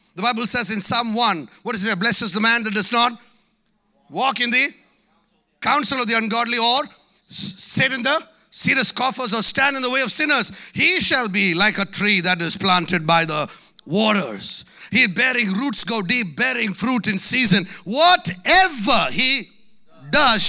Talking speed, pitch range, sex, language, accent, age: 180 wpm, 200-250 Hz, male, English, Indian, 50-69